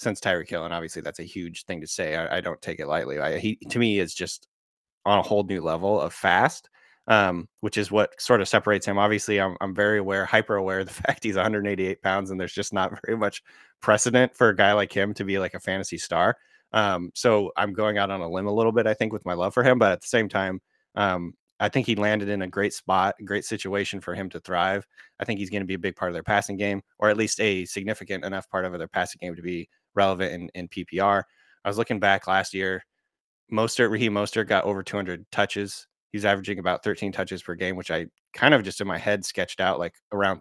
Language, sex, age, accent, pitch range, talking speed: English, male, 20-39, American, 95-105 Hz, 250 wpm